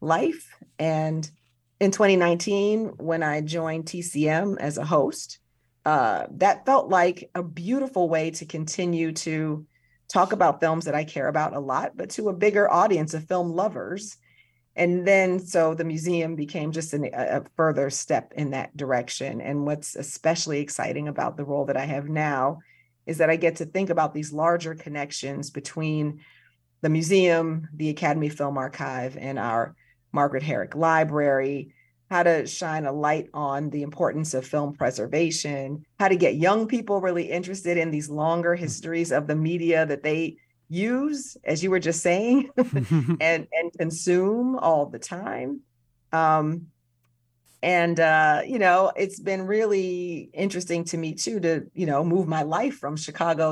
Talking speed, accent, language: 160 wpm, American, English